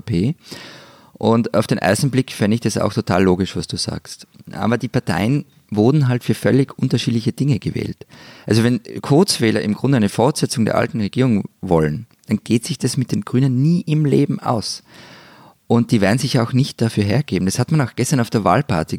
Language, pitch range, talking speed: German, 100-125 Hz, 195 wpm